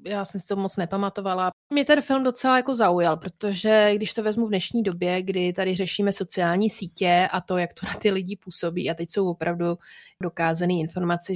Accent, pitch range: native, 180-210 Hz